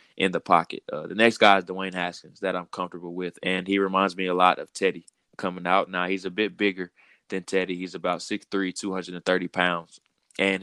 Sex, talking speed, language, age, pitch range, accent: male, 210 wpm, English, 20-39, 90-100 Hz, American